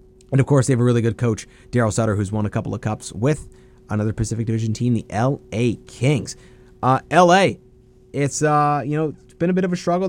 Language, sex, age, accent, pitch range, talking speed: English, male, 30-49, American, 115-150 Hz, 225 wpm